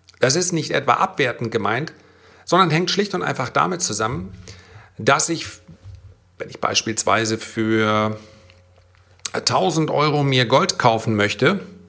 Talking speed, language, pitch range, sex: 125 wpm, German, 105-145 Hz, male